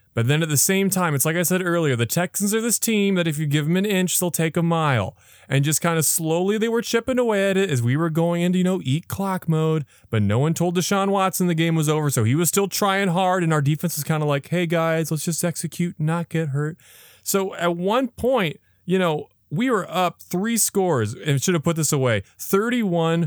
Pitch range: 120-175 Hz